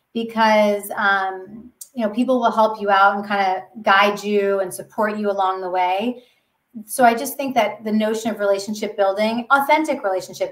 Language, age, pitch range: English, 30-49, 200-235 Hz